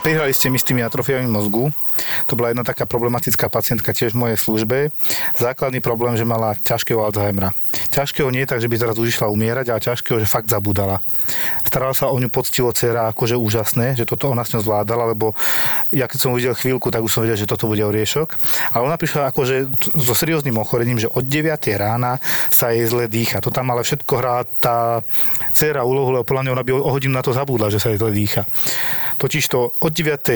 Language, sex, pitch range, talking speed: Slovak, male, 115-140 Hz, 205 wpm